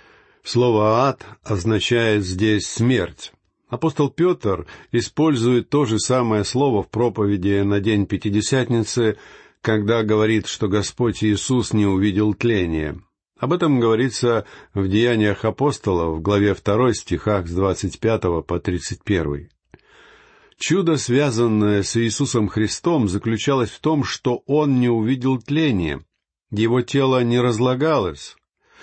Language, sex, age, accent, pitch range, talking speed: Russian, male, 50-69, native, 105-140 Hz, 115 wpm